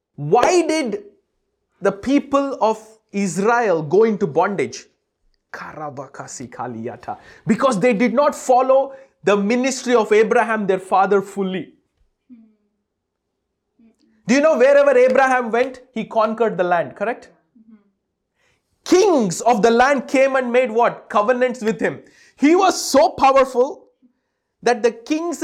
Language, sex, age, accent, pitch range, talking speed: English, male, 20-39, Indian, 205-270 Hz, 120 wpm